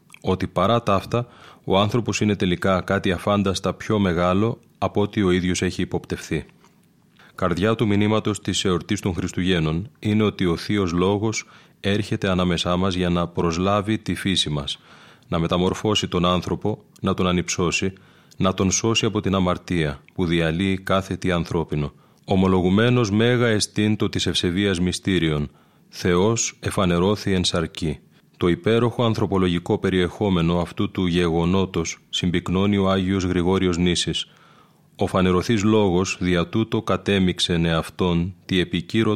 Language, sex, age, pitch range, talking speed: Greek, male, 30-49, 90-100 Hz, 135 wpm